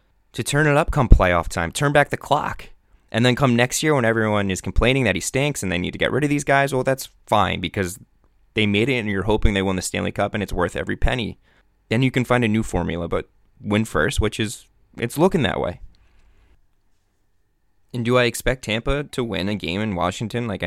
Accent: American